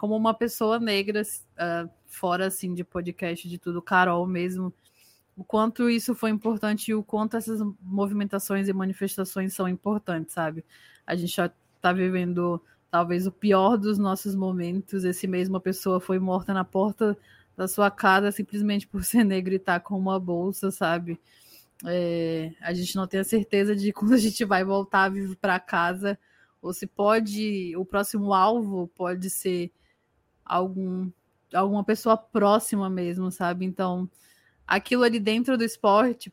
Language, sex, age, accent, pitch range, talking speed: Portuguese, female, 20-39, Brazilian, 180-205 Hz, 160 wpm